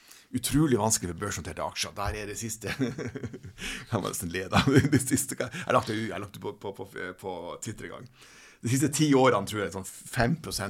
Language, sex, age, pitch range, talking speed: English, male, 60-79, 100-135 Hz, 175 wpm